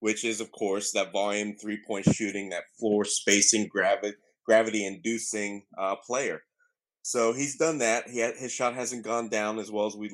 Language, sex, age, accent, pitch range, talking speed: English, male, 30-49, American, 105-120 Hz, 165 wpm